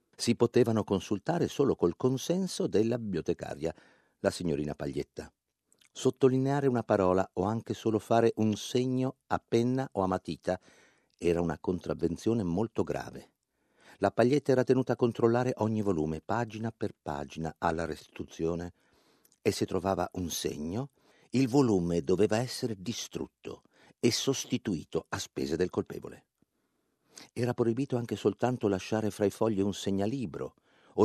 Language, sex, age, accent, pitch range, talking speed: Italian, male, 50-69, native, 90-125 Hz, 135 wpm